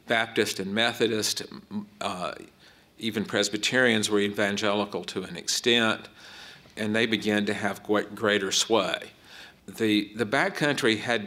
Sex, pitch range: male, 100-115 Hz